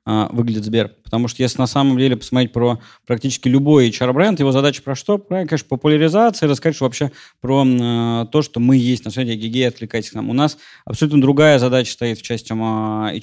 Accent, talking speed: native, 190 wpm